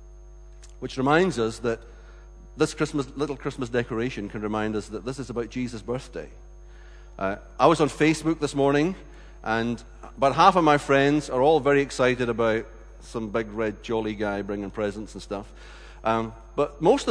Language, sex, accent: English, male, British